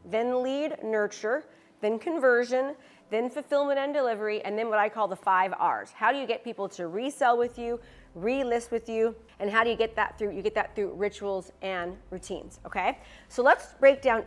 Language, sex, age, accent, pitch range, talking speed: English, female, 30-49, American, 200-245 Hz, 200 wpm